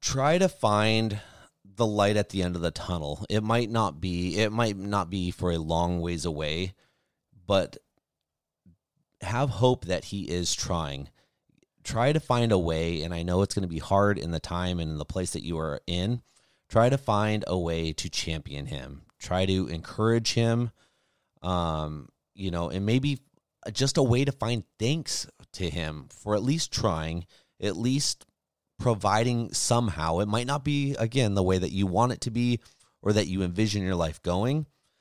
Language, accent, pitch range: English, American, 85-115 Hz